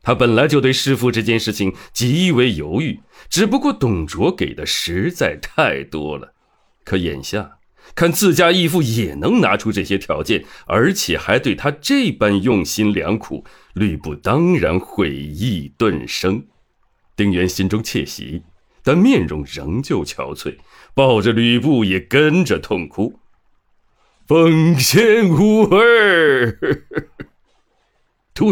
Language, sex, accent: Chinese, male, native